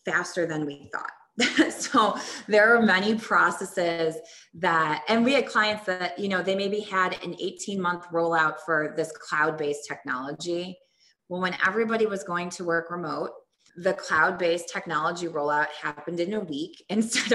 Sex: female